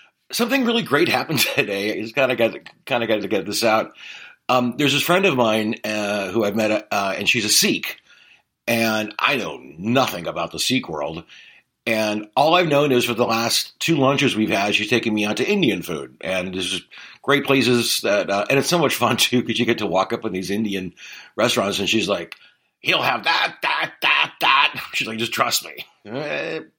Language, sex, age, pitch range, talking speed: English, male, 50-69, 105-140 Hz, 215 wpm